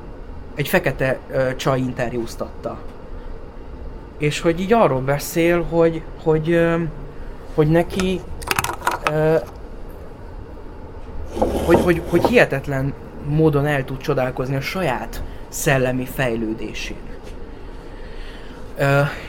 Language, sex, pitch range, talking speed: Hungarian, male, 120-155 Hz, 95 wpm